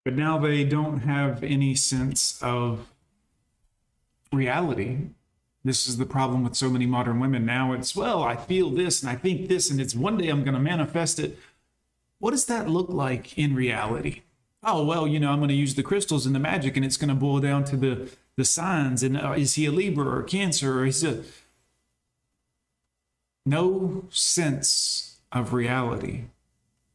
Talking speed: 185 wpm